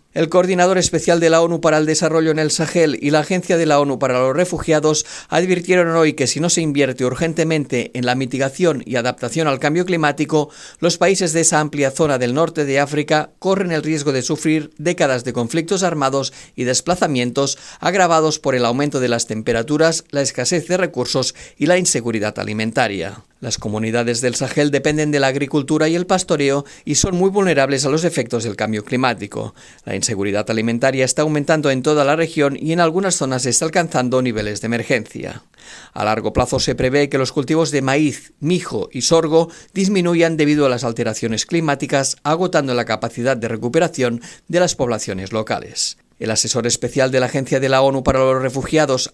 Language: Spanish